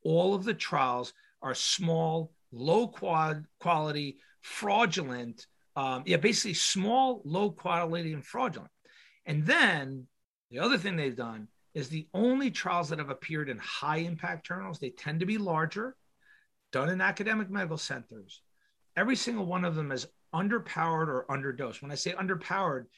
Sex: male